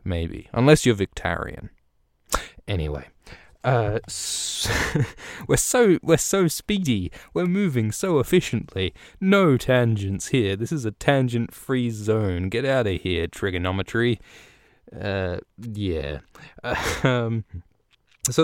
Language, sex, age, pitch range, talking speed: English, male, 20-39, 95-115 Hz, 110 wpm